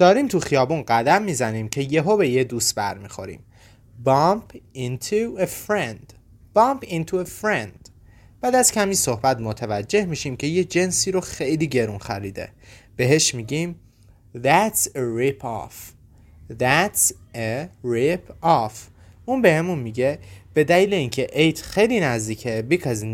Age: 30-49